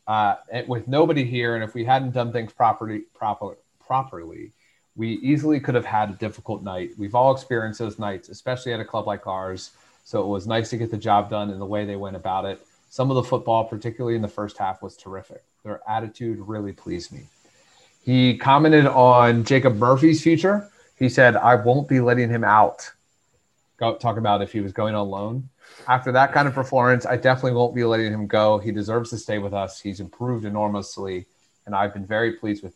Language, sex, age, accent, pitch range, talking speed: English, male, 30-49, American, 105-130 Hz, 210 wpm